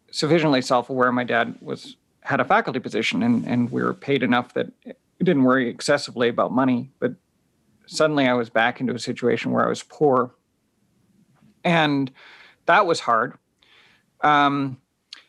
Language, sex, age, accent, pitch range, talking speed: English, male, 40-59, American, 125-155 Hz, 155 wpm